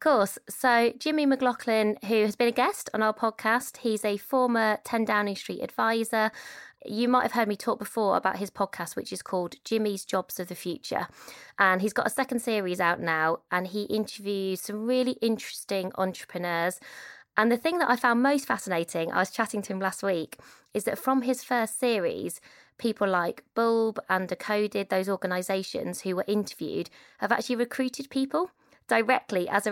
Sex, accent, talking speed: female, British, 185 wpm